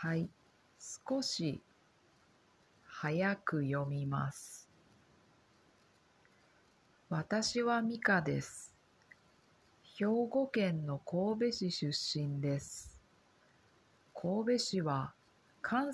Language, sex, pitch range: Japanese, female, 150-230 Hz